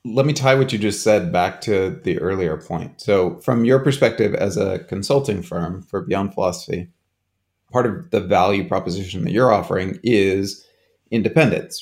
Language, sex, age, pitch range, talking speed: English, male, 30-49, 95-115 Hz, 170 wpm